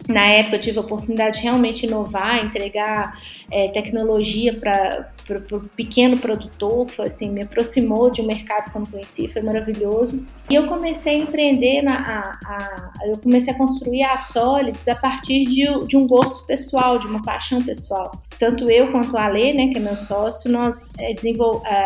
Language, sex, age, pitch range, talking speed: Portuguese, female, 20-39, 215-265 Hz, 185 wpm